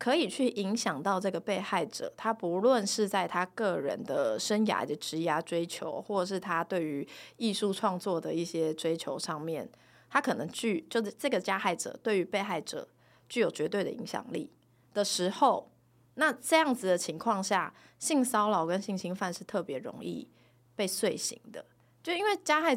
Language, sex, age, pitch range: Chinese, female, 20-39, 180-235 Hz